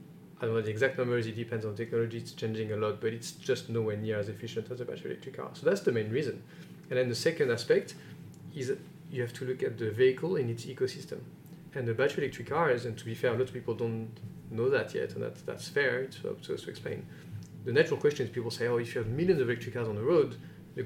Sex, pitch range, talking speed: male, 115-165 Hz, 270 wpm